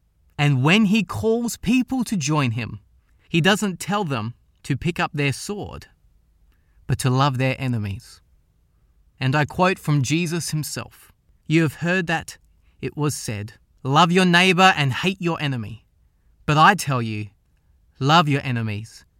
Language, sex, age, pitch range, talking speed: English, male, 20-39, 115-185 Hz, 155 wpm